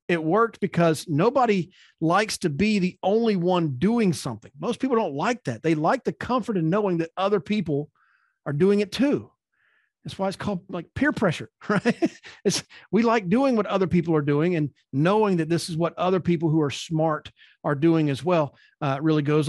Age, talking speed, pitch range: 40-59, 200 wpm, 145-210 Hz